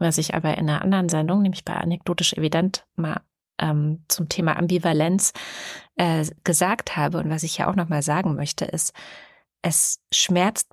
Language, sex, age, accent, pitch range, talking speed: German, female, 30-49, German, 160-190 Hz, 175 wpm